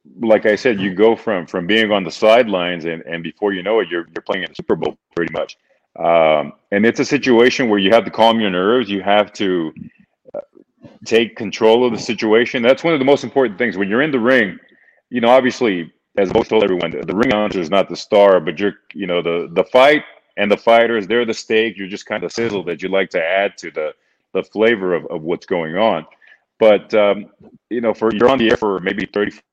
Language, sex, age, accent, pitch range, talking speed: English, male, 30-49, American, 95-115 Hz, 240 wpm